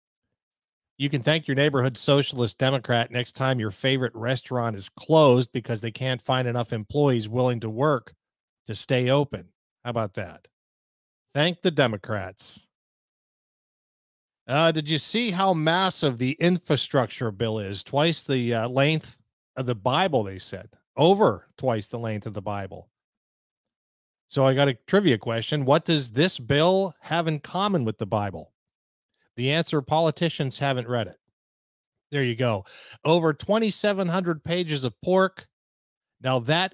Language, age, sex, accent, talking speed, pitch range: English, 50-69, male, American, 145 wpm, 115-155 Hz